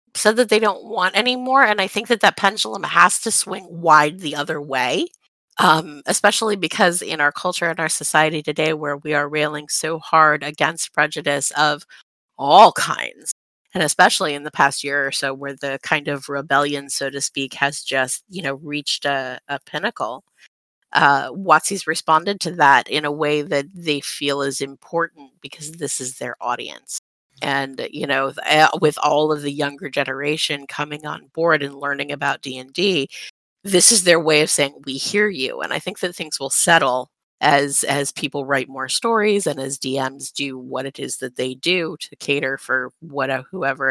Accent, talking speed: American, 185 wpm